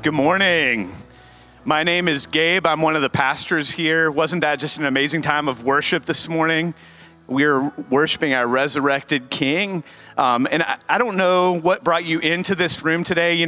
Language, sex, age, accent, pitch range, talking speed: English, male, 30-49, American, 150-180 Hz, 185 wpm